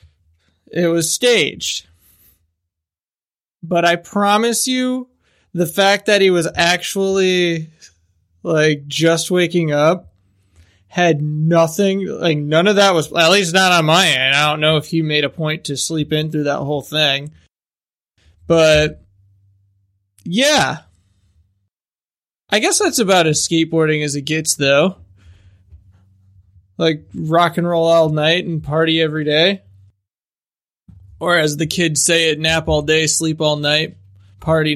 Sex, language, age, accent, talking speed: male, English, 20-39, American, 140 wpm